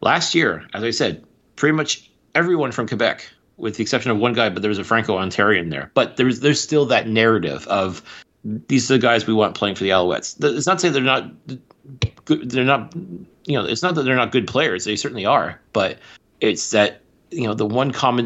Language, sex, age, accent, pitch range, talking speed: English, male, 30-49, American, 100-120 Hz, 220 wpm